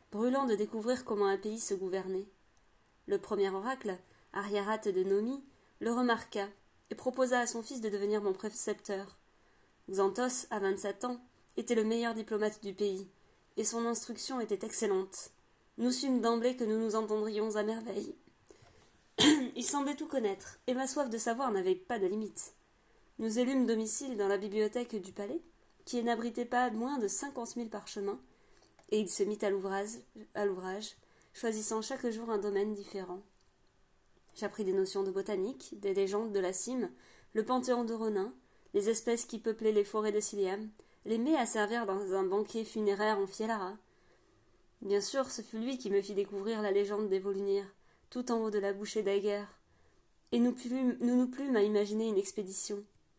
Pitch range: 200-235 Hz